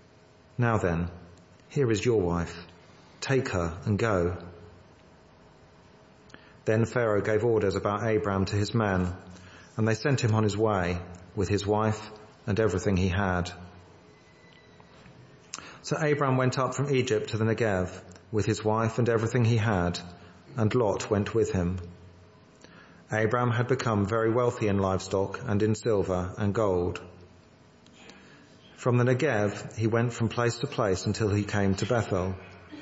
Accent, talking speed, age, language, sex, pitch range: British, 145 wpm, 40-59, English, male, 90-115 Hz